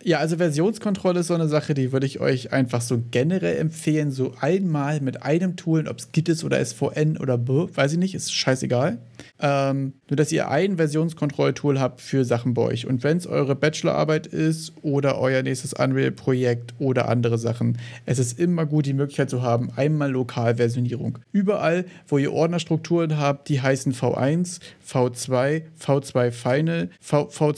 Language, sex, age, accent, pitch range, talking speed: German, male, 40-59, German, 125-160 Hz, 170 wpm